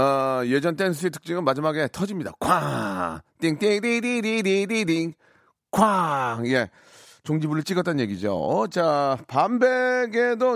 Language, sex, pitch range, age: Korean, male, 120-175 Hz, 30-49